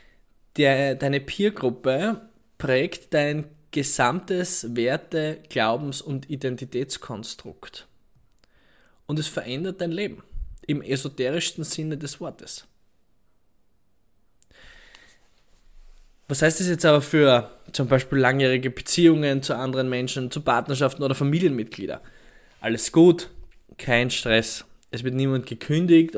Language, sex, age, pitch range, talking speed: German, male, 20-39, 125-150 Hz, 100 wpm